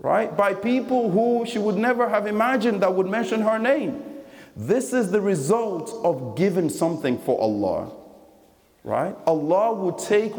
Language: English